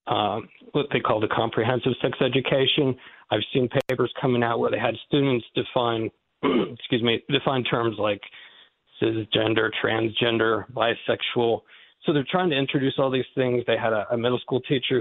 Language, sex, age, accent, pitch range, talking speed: English, male, 40-59, American, 115-130 Hz, 165 wpm